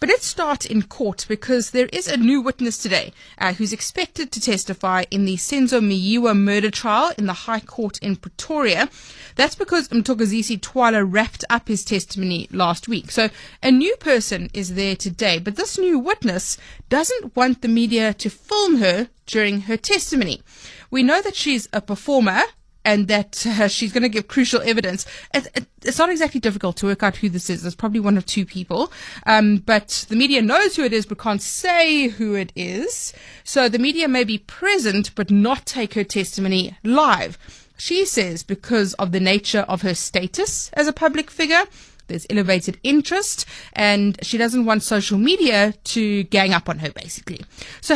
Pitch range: 200-265 Hz